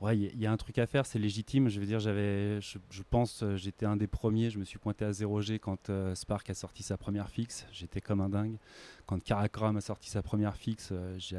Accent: French